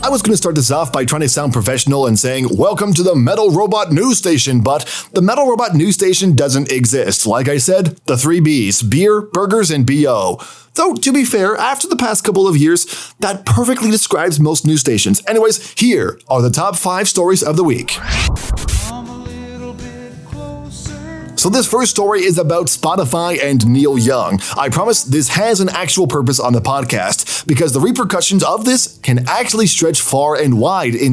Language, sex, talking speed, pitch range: English, male, 185 wpm, 125-190 Hz